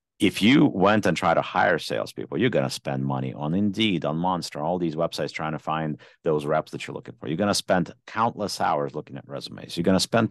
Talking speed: 245 wpm